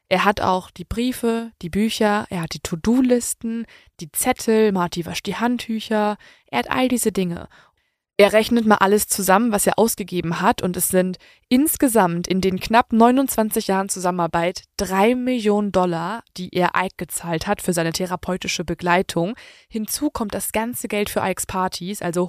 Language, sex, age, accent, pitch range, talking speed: German, female, 20-39, German, 185-225 Hz, 165 wpm